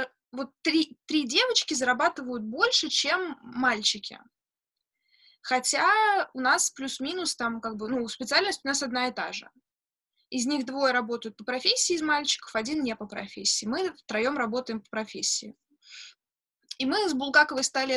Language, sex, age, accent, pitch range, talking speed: Russian, female, 20-39, native, 225-295 Hz, 150 wpm